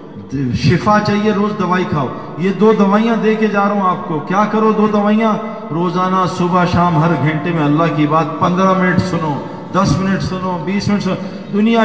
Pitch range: 175-220 Hz